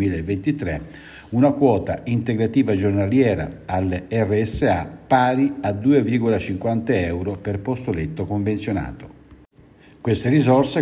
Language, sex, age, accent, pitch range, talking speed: Italian, male, 60-79, native, 90-110 Hz, 95 wpm